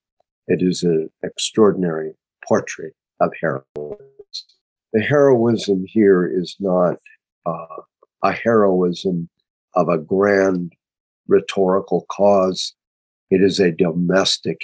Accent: American